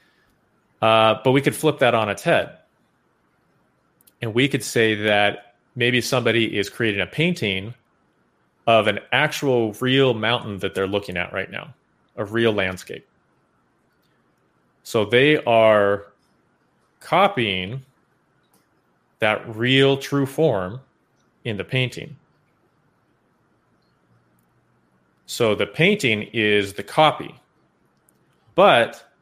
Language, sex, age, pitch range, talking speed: English, male, 30-49, 100-125 Hz, 105 wpm